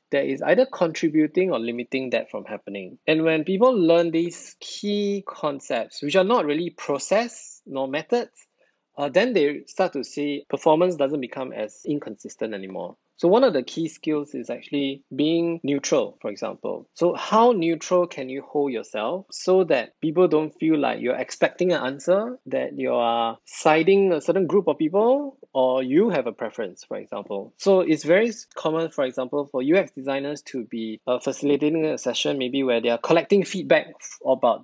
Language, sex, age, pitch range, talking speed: English, male, 20-39, 135-185 Hz, 180 wpm